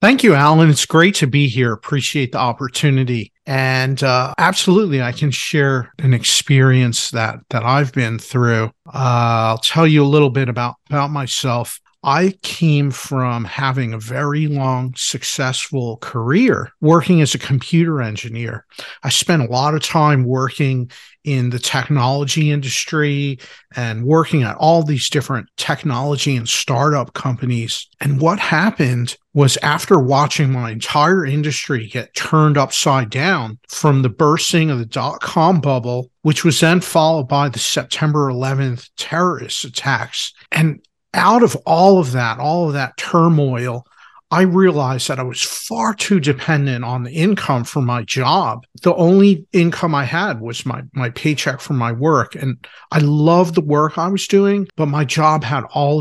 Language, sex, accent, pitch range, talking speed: English, male, American, 125-160 Hz, 160 wpm